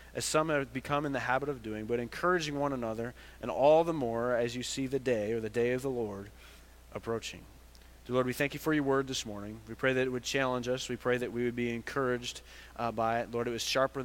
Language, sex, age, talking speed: English, male, 30-49, 255 wpm